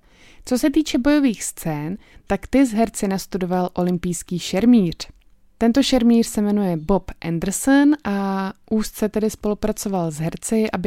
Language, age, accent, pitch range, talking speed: Czech, 20-39, native, 175-210 Hz, 140 wpm